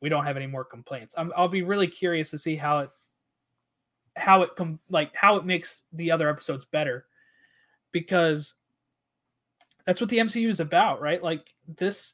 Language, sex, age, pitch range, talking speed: English, male, 20-39, 145-180 Hz, 175 wpm